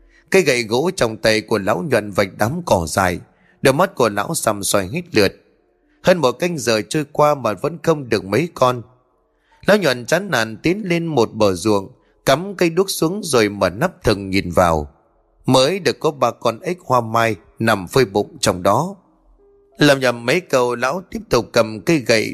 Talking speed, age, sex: 200 wpm, 20-39, male